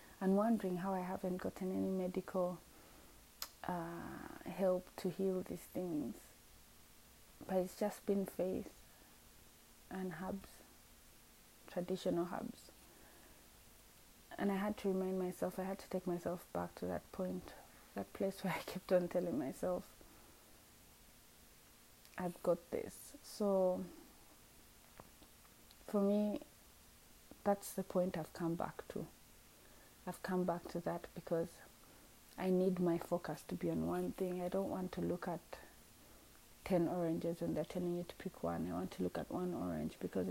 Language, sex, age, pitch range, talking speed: English, female, 20-39, 170-195 Hz, 145 wpm